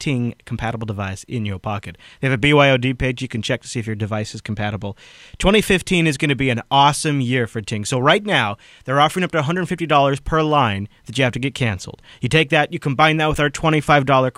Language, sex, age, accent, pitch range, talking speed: English, male, 30-49, American, 115-150 Hz, 235 wpm